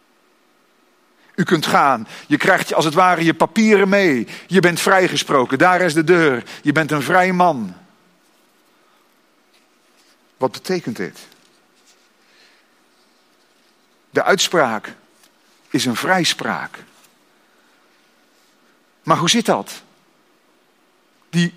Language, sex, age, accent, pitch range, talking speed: Dutch, male, 50-69, Dutch, 175-240 Hz, 100 wpm